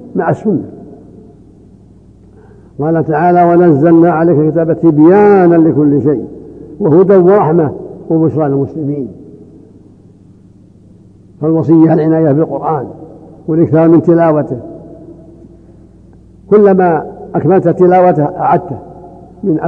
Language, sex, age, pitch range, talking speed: Arabic, male, 60-79, 140-170 Hz, 75 wpm